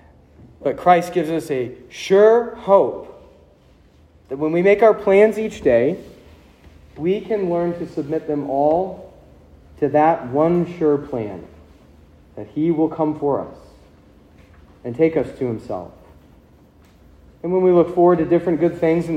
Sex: male